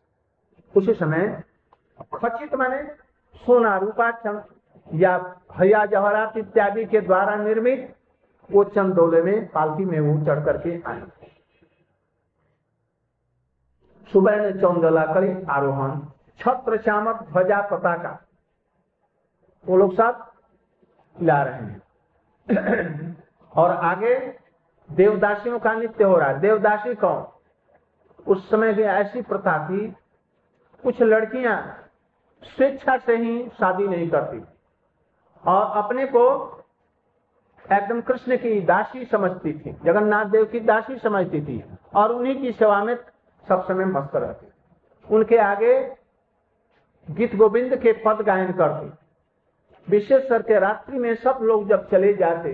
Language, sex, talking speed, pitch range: Hindi, male, 110 wpm, 180-230 Hz